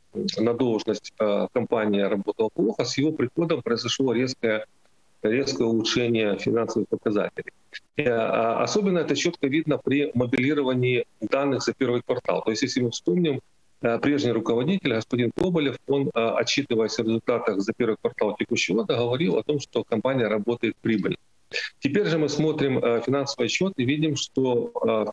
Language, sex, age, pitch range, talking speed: Ukrainian, male, 40-59, 115-145 Hz, 145 wpm